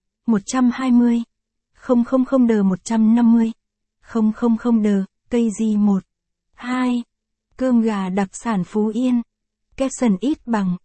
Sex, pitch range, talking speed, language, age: female, 205-240 Hz, 105 wpm, Vietnamese, 60-79